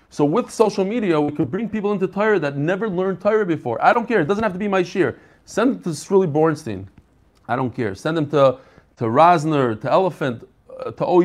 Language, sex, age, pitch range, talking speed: English, male, 30-49, 155-225 Hz, 225 wpm